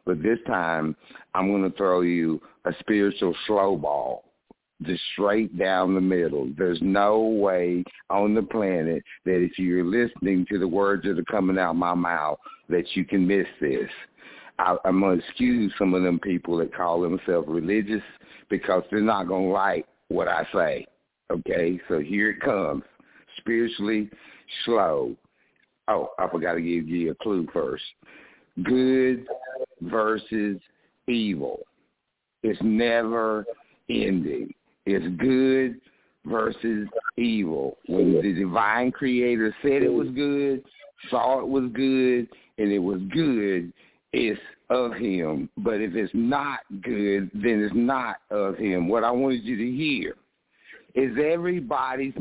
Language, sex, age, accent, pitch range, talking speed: English, male, 60-79, American, 95-130 Hz, 145 wpm